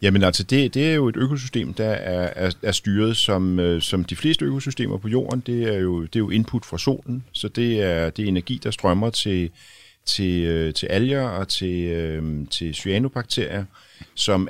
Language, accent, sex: Danish, native, male